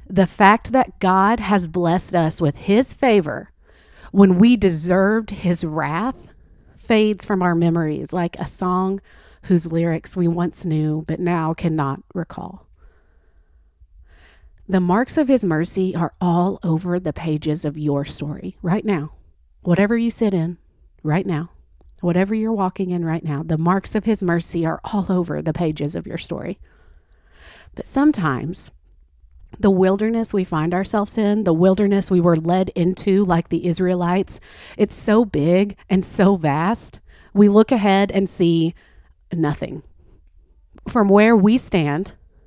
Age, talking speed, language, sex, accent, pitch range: 40-59, 145 wpm, English, female, American, 145-195 Hz